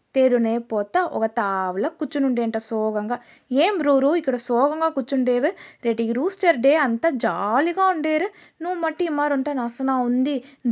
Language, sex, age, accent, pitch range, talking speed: Telugu, female, 20-39, native, 225-275 Hz, 135 wpm